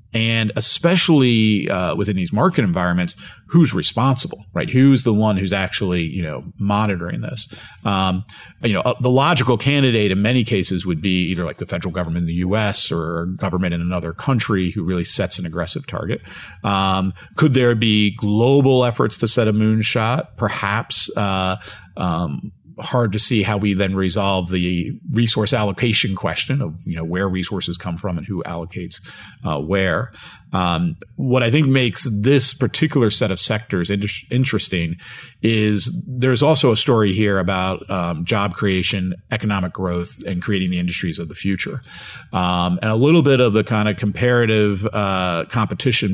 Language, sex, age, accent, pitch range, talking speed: English, male, 40-59, American, 90-120 Hz, 165 wpm